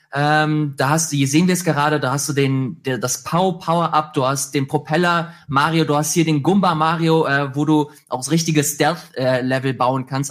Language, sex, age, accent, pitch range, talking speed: German, male, 20-39, German, 135-155 Hz, 215 wpm